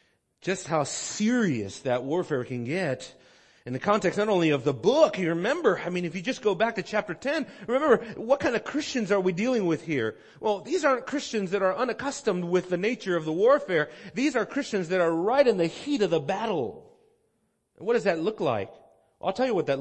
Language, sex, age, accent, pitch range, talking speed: English, male, 40-59, American, 170-230 Hz, 220 wpm